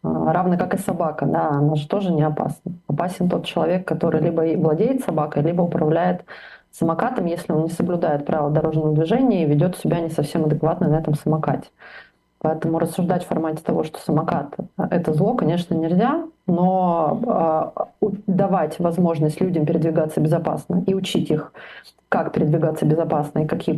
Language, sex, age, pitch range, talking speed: Russian, female, 30-49, 155-185 Hz, 160 wpm